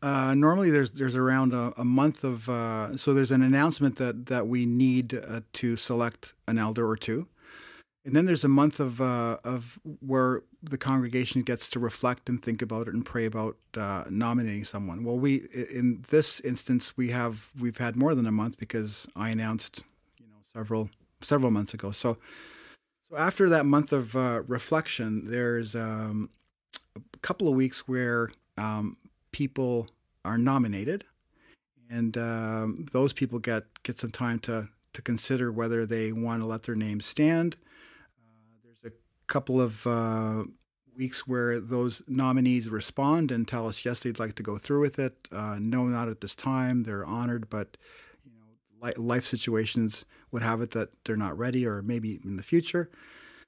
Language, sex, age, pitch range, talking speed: English, male, 40-59, 110-130 Hz, 175 wpm